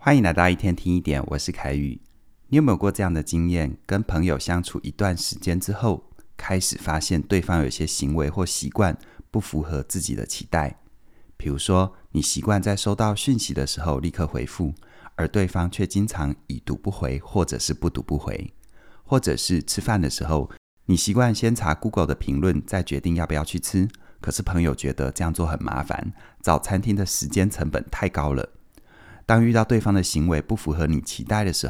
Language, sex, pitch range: Chinese, male, 75-100 Hz